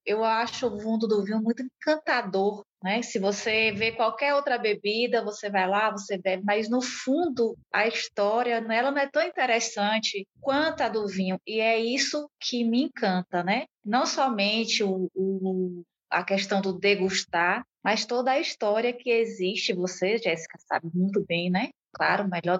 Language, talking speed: Portuguese, 165 wpm